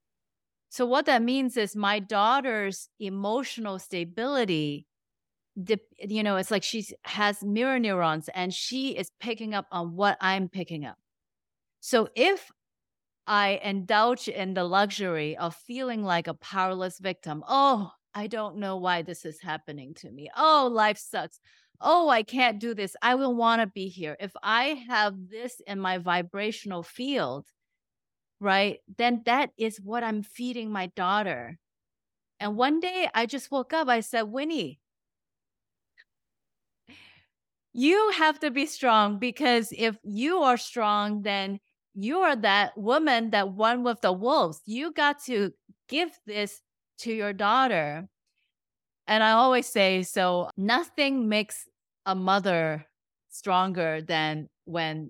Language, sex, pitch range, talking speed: English, female, 185-240 Hz, 145 wpm